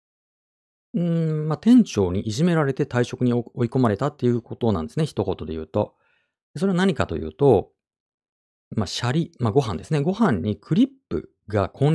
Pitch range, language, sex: 95-135 Hz, Japanese, male